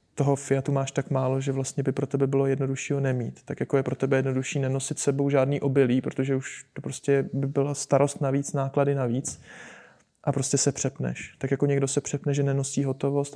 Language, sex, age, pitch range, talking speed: Czech, male, 20-39, 135-145 Hz, 200 wpm